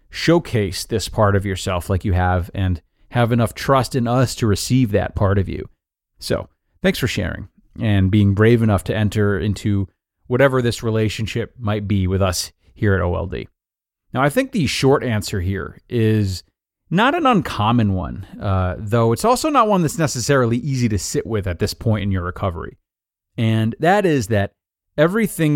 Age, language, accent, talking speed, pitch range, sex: 30-49, English, American, 180 wpm, 100-130 Hz, male